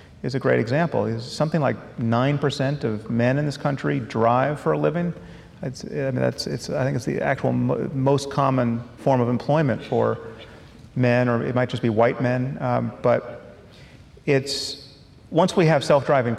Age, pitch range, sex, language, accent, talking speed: 40-59, 115-145 Hz, male, English, American, 185 wpm